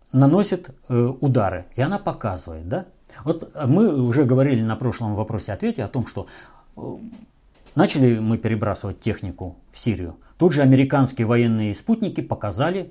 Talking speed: 135 wpm